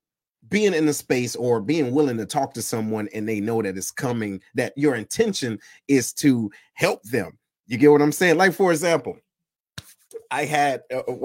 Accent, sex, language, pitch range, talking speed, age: American, male, English, 130-205 Hz, 185 wpm, 30-49